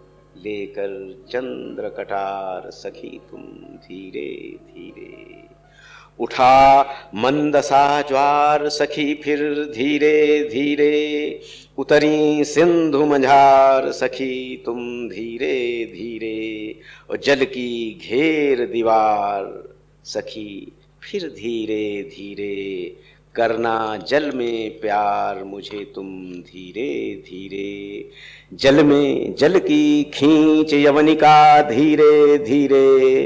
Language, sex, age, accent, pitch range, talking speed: Hindi, male, 50-69, native, 110-150 Hz, 80 wpm